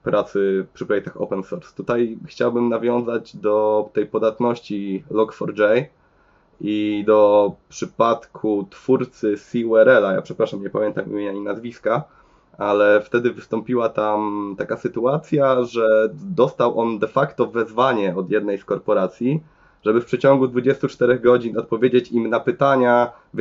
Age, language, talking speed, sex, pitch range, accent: 20-39, Polish, 130 wpm, male, 105-130 Hz, native